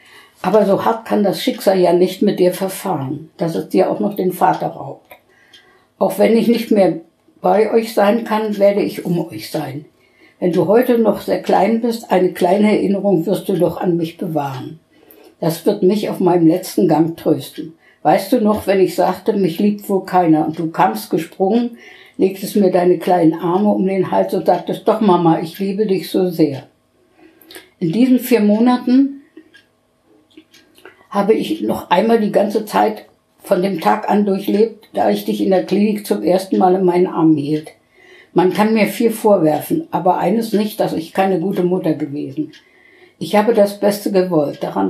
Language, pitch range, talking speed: German, 175-215 Hz, 185 wpm